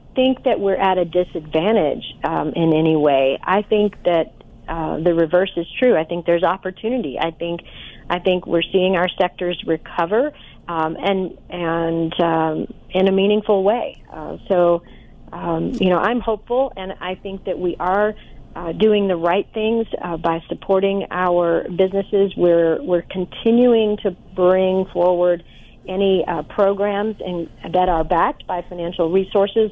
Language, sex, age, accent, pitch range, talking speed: English, female, 40-59, American, 170-195 Hz, 160 wpm